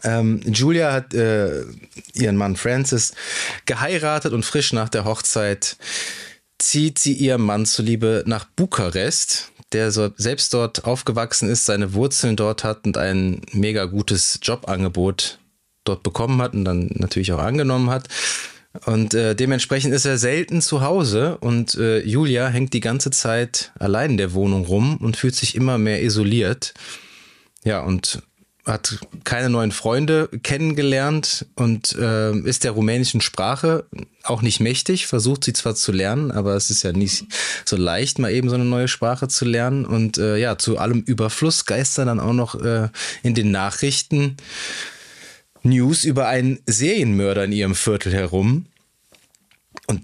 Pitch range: 105-135 Hz